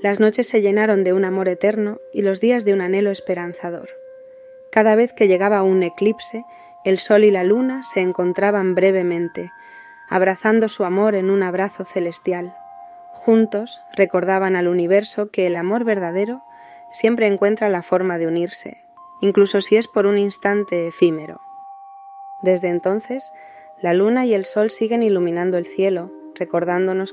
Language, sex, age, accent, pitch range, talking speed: Spanish, female, 20-39, Spanish, 180-220 Hz, 155 wpm